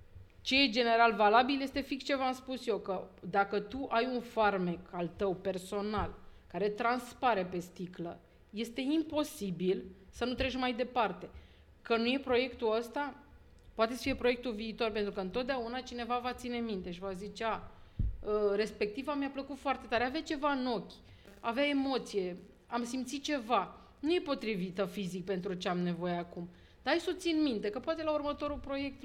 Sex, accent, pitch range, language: female, native, 195-255 Hz, Romanian